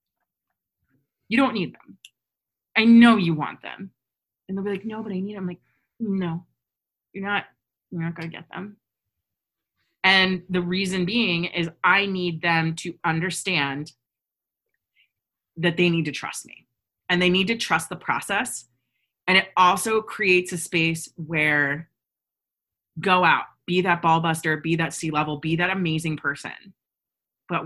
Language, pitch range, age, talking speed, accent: English, 155-190 Hz, 30-49, 155 wpm, American